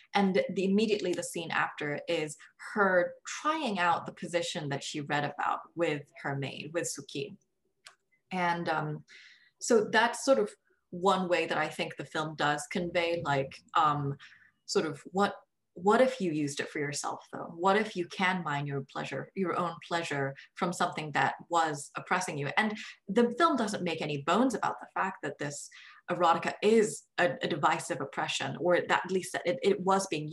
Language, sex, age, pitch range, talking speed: English, female, 20-39, 150-195 Hz, 180 wpm